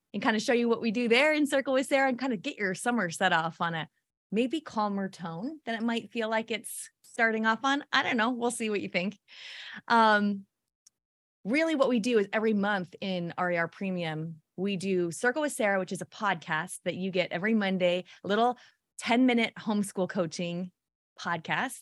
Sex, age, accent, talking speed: female, 20-39, American, 205 wpm